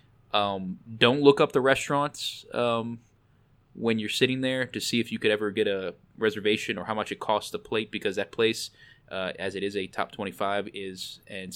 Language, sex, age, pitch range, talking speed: English, male, 20-39, 95-120 Hz, 200 wpm